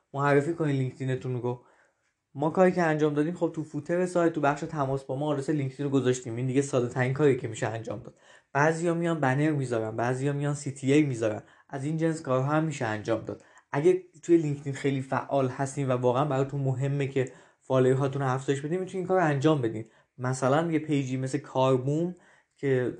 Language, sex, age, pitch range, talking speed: Persian, male, 20-39, 130-155 Hz, 195 wpm